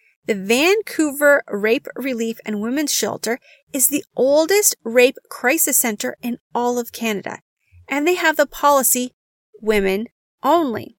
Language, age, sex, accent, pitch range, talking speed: English, 30-49, female, American, 225-300 Hz, 130 wpm